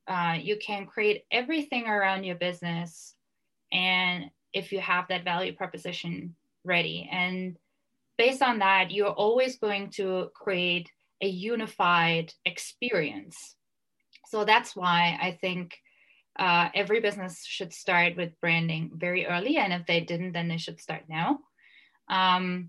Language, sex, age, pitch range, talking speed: English, female, 20-39, 170-195 Hz, 140 wpm